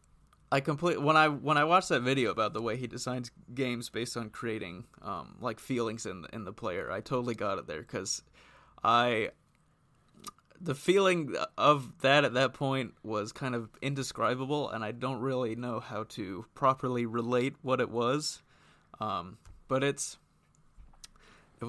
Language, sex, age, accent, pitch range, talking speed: English, male, 30-49, American, 115-150 Hz, 165 wpm